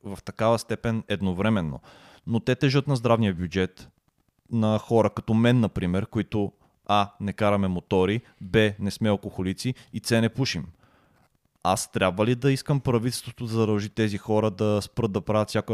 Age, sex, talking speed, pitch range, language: 20-39, male, 165 wpm, 105-125 Hz, Bulgarian